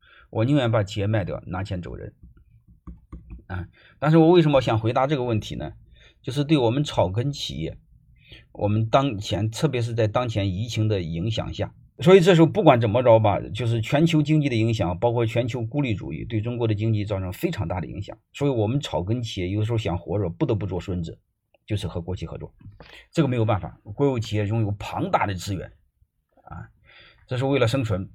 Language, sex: Chinese, male